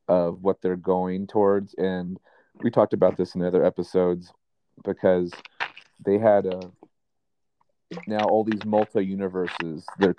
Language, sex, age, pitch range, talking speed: English, male, 30-49, 90-100 Hz, 125 wpm